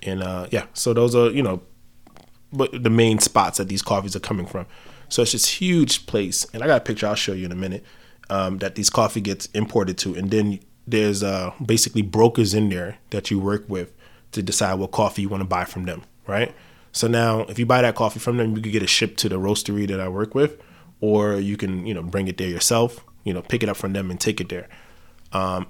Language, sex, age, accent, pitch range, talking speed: English, male, 20-39, American, 95-115 Hz, 245 wpm